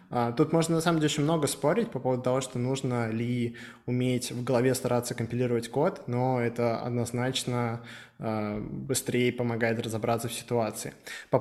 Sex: male